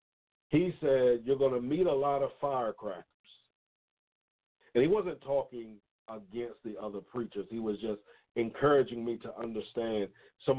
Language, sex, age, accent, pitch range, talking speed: English, male, 50-69, American, 110-145 Hz, 145 wpm